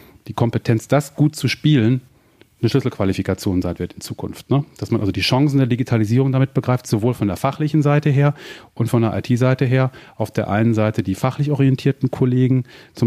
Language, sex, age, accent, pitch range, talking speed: German, male, 30-49, German, 105-125 Hz, 190 wpm